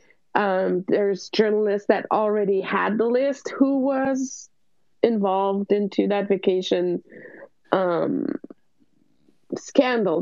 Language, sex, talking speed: English, female, 95 wpm